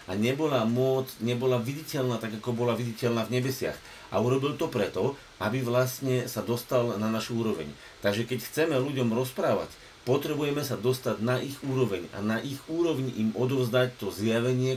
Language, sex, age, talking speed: Slovak, male, 50-69, 165 wpm